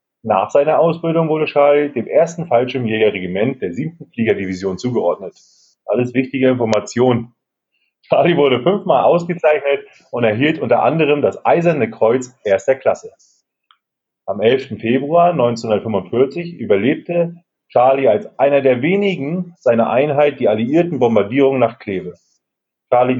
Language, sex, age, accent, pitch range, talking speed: German, male, 30-49, German, 115-165 Hz, 120 wpm